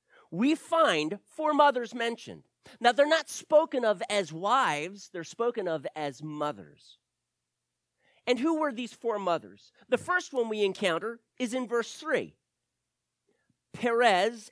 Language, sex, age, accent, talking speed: English, male, 40-59, American, 135 wpm